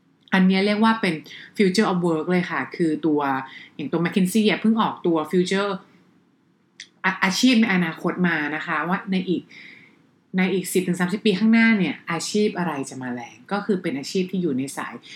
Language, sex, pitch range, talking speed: English, female, 165-205 Hz, 45 wpm